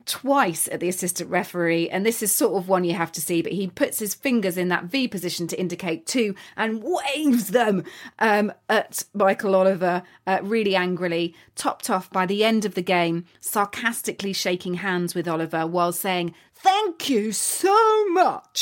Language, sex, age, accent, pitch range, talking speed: English, female, 30-49, British, 170-220 Hz, 180 wpm